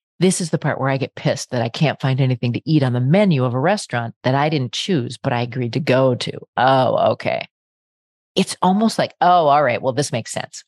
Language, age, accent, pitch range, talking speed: English, 30-49, American, 130-180 Hz, 240 wpm